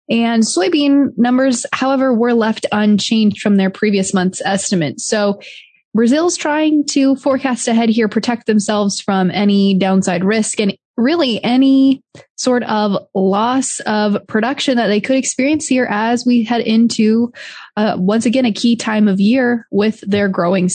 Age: 20-39